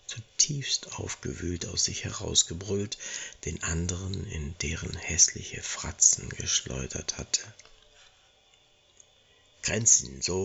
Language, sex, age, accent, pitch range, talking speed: German, male, 60-79, German, 95-125 Hz, 85 wpm